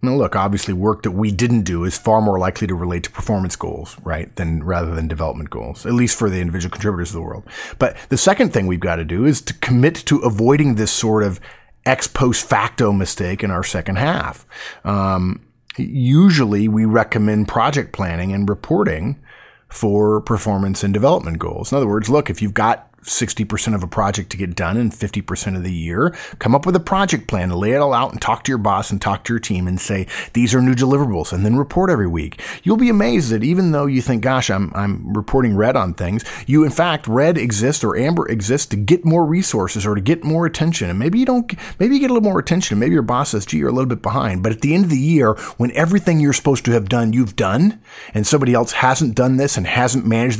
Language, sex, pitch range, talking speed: English, male, 100-135 Hz, 235 wpm